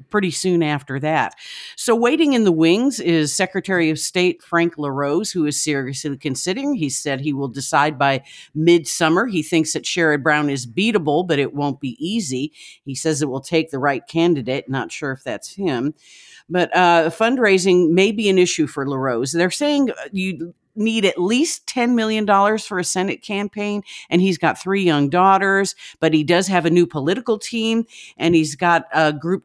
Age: 50-69